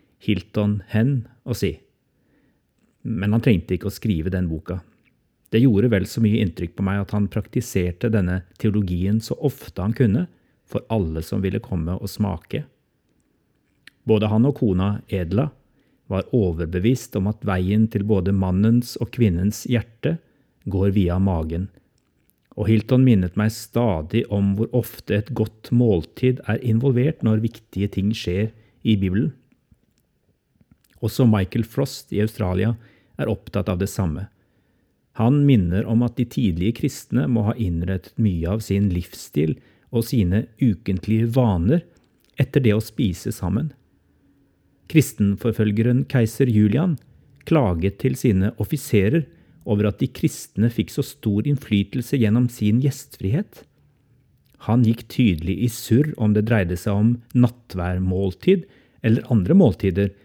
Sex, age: male, 40-59